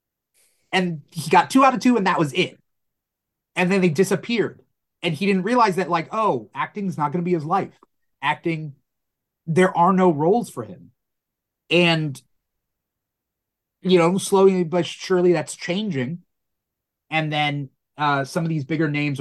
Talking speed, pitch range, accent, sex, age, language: 165 wpm, 135-185 Hz, American, male, 30-49, English